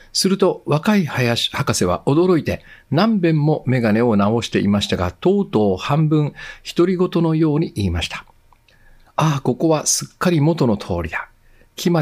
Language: Japanese